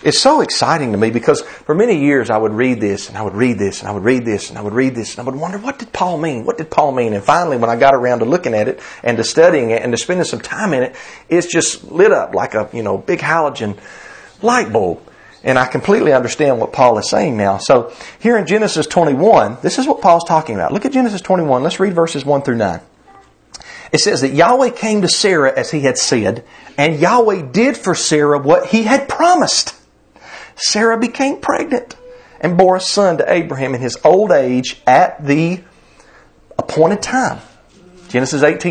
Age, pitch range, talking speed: 40-59, 130-195 Hz, 220 wpm